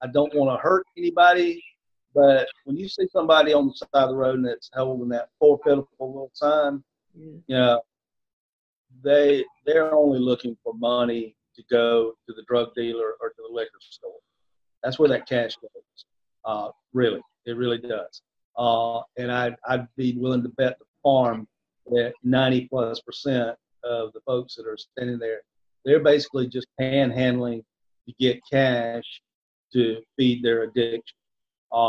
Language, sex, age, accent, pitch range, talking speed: English, male, 50-69, American, 120-145 Hz, 160 wpm